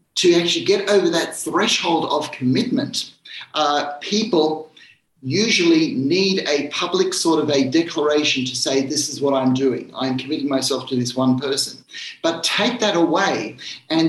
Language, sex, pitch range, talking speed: English, male, 150-210 Hz, 160 wpm